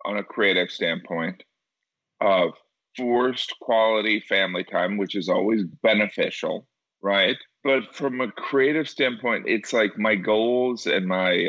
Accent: American